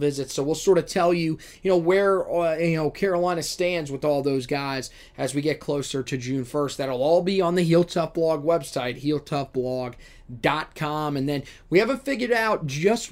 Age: 20-39